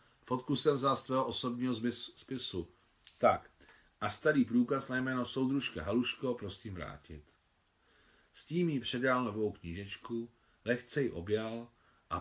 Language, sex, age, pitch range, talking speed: Czech, male, 40-59, 85-125 Hz, 130 wpm